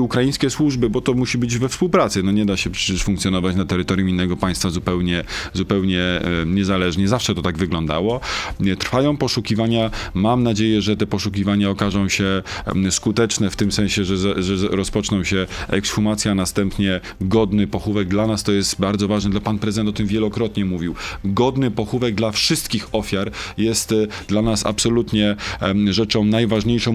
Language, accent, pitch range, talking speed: Polish, native, 100-120 Hz, 155 wpm